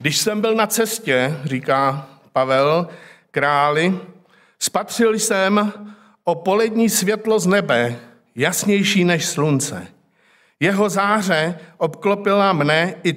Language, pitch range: Czech, 155-200 Hz